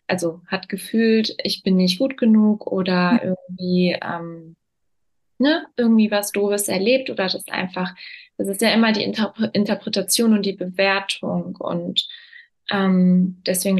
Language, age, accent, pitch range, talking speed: German, 20-39, German, 185-220 Hz, 140 wpm